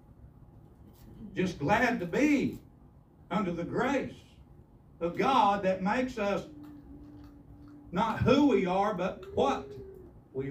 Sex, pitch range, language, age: male, 135-175 Hz, English, 60-79